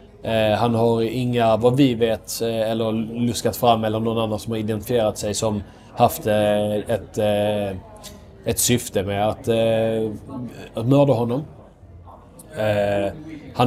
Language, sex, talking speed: Swedish, male, 120 wpm